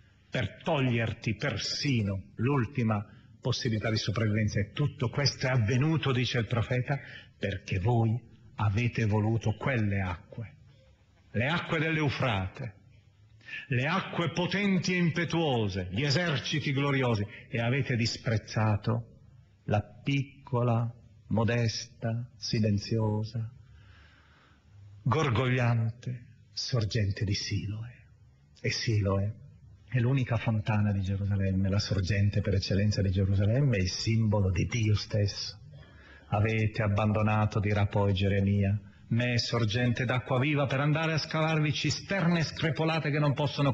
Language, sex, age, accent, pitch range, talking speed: Italian, male, 40-59, native, 105-130 Hz, 115 wpm